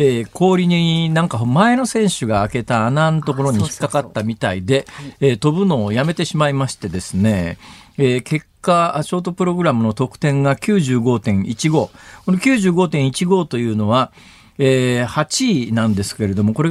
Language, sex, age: Japanese, male, 50-69